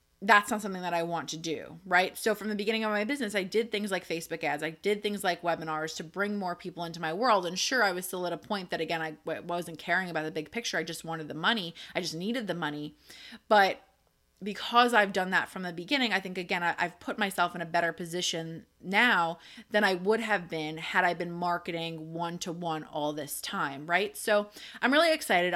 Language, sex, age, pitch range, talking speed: English, female, 20-39, 170-210 Hz, 230 wpm